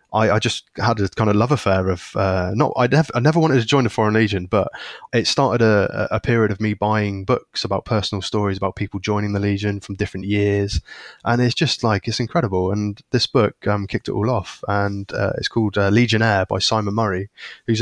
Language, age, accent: English, 20-39, British